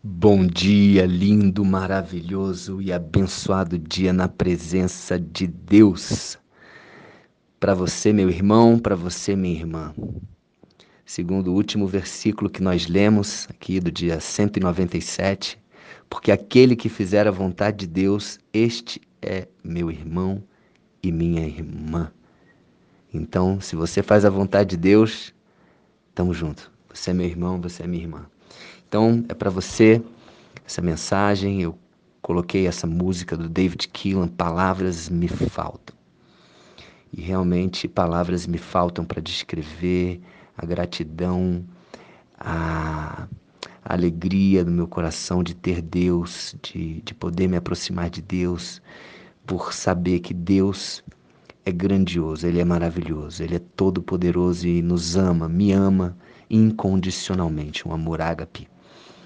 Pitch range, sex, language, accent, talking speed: 85-95 Hz, male, Portuguese, Brazilian, 130 wpm